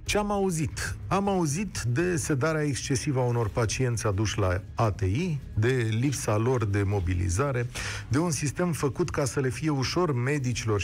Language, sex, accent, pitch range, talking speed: Romanian, male, native, 105-140 Hz, 160 wpm